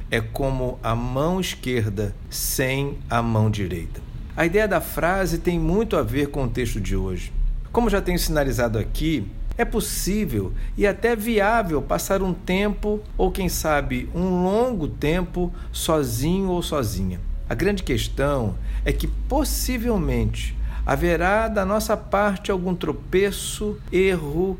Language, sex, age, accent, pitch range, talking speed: Portuguese, male, 60-79, Brazilian, 120-180 Hz, 140 wpm